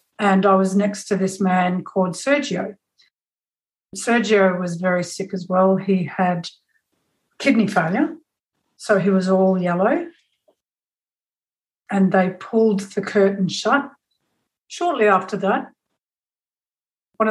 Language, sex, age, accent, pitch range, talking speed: English, female, 60-79, Australian, 190-210 Hz, 120 wpm